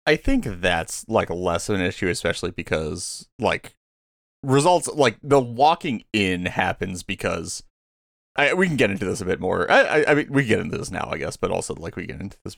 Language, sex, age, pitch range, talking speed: English, male, 30-49, 90-120 Hz, 225 wpm